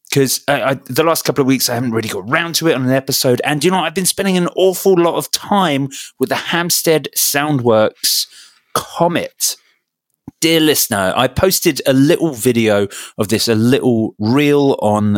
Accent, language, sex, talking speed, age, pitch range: British, English, male, 190 wpm, 30-49, 105-145 Hz